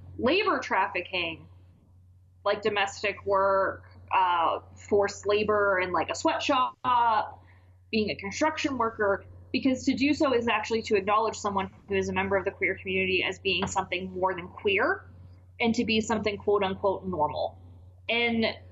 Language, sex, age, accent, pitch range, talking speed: English, female, 20-39, American, 185-235 Hz, 155 wpm